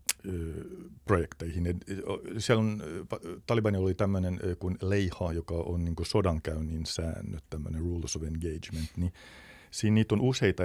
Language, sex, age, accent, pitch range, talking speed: Finnish, male, 50-69, native, 80-100 Hz, 125 wpm